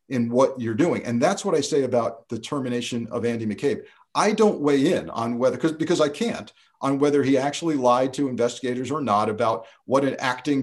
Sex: male